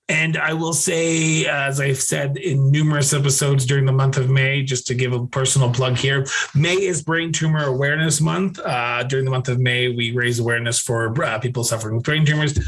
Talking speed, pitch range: 210 wpm, 125-145 Hz